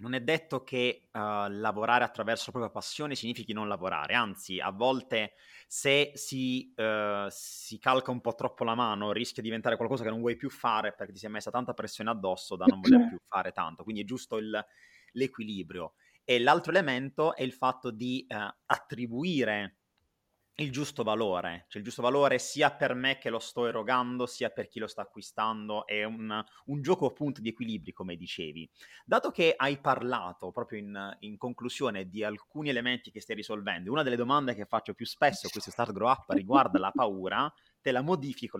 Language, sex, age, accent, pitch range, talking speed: Italian, male, 30-49, native, 105-130 Hz, 195 wpm